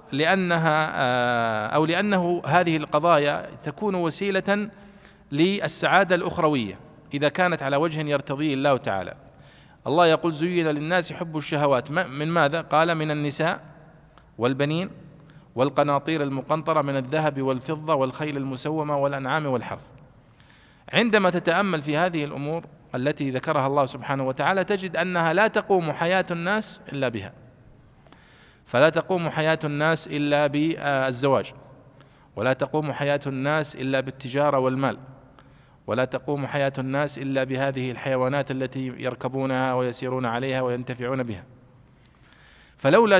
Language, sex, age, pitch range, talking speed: Arabic, male, 40-59, 135-160 Hz, 115 wpm